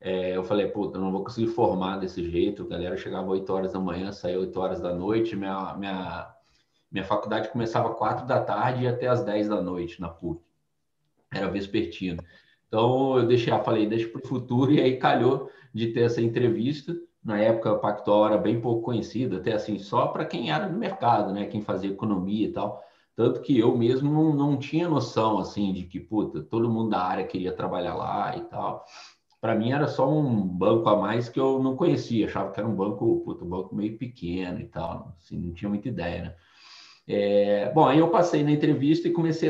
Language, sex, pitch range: Portuguese, male, 95-130 Hz